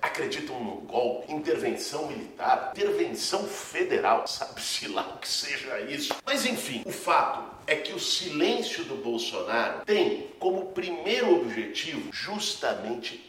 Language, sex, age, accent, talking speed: Portuguese, male, 50-69, Brazilian, 125 wpm